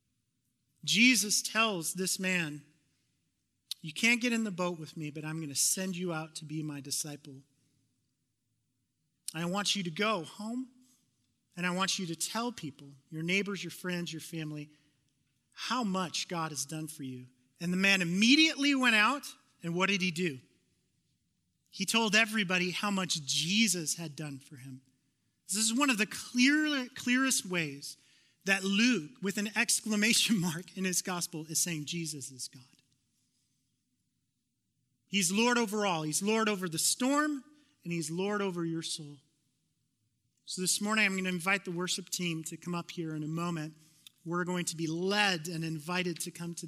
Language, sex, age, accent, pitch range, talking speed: English, male, 30-49, American, 150-200 Hz, 170 wpm